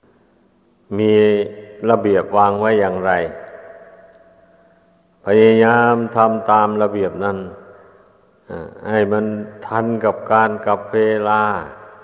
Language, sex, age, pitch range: Thai, male, 60-79, 100-110 Hz